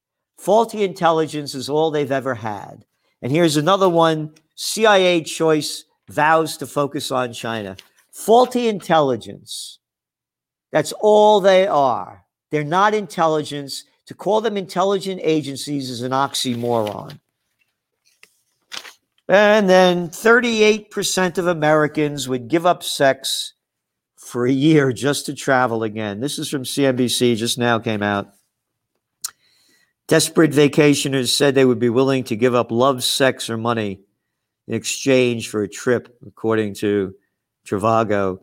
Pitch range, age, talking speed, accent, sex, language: 125-185 Hz, 50-69, 125 wpm, American, male, English